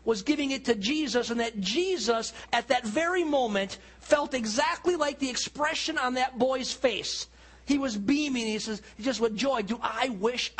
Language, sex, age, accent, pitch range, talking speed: English, male, 40-59, American, 155-235 Hz, 180 wpm